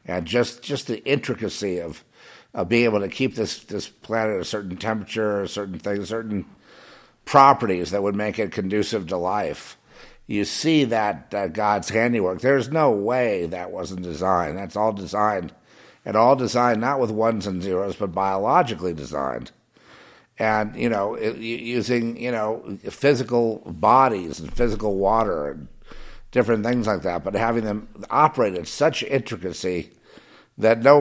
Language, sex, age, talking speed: English, male, 50-69, 160 wpm